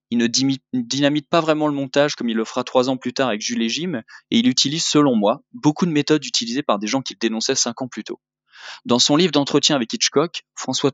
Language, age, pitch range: French, 20-39, 115-150 Hz